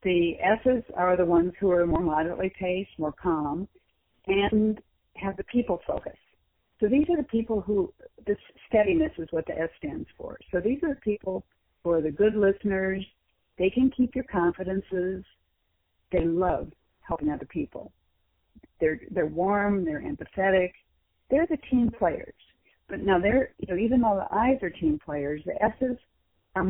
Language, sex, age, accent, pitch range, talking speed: English, female, 50-69, American, 165-205 Hz, 170 wpm